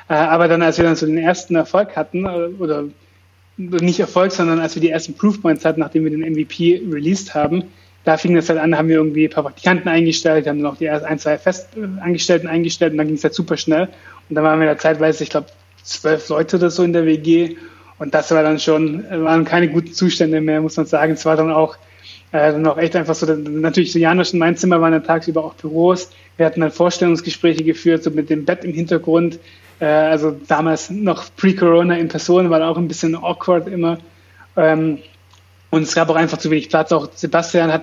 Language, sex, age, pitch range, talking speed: German, male, 30-49, 155-175 Hz, 215 wpm